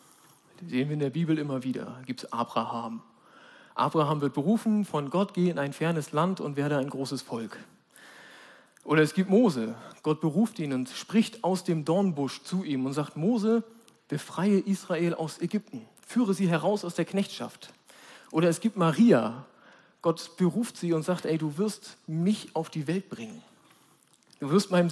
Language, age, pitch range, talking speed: German, 40-59, 155-205 Hz, 175 wpm